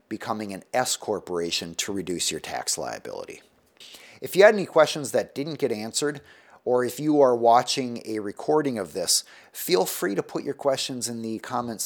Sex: male